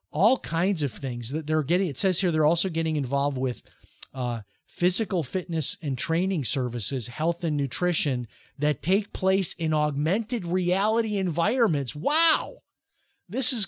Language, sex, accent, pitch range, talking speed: English, male, American, 135-170 Hz, 150 wpm